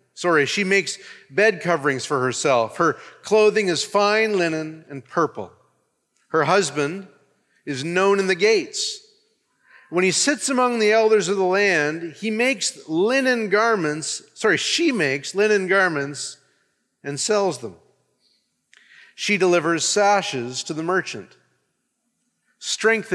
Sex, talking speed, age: male, 125 wpm, 40-59